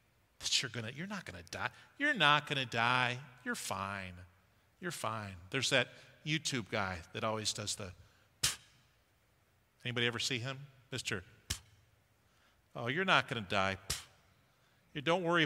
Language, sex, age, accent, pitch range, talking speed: English, male, 50-69, American, 105-165 Hz, 160 wpm